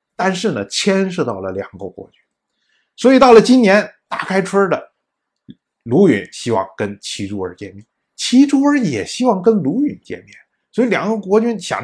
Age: 50-69